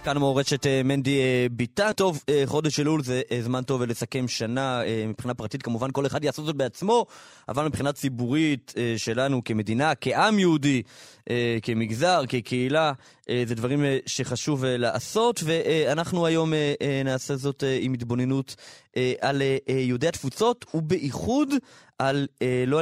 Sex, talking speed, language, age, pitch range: male, 160 wpm, Hebrew, 20-39, 125-165 Hz